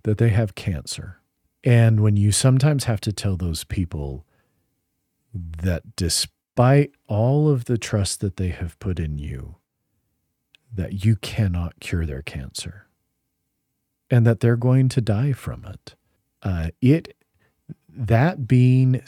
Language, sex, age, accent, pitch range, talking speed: English, male, 40-59, American, 95-130 Hz, 135 wpm